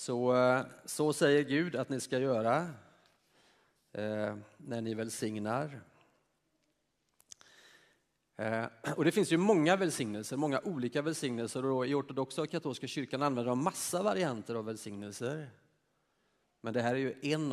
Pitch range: 115-145 Hz